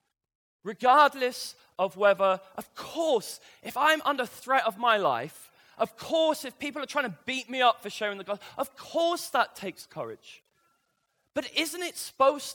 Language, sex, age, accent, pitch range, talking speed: English, male, 20-39, British, 200-280 Hz, 165 wpm